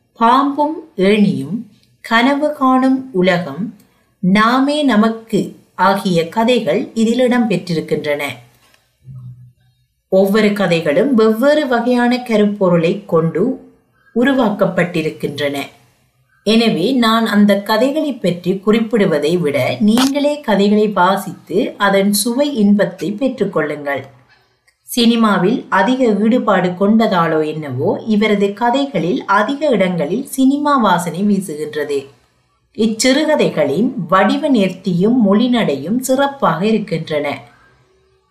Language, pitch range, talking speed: Tamil, 170-235 Hz, 80 wpm